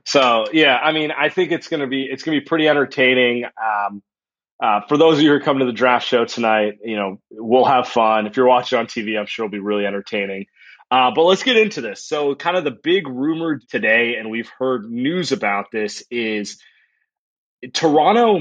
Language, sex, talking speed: English, male, 210 wpm